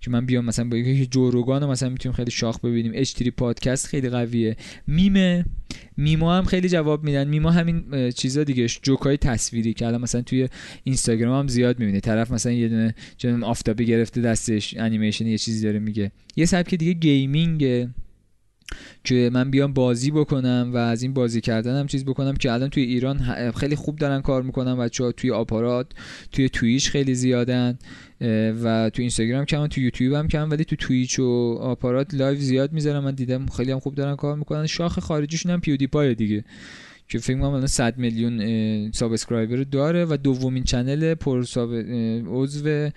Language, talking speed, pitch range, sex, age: Persian, 175 wpm, 120-150 Hz, male, 20-39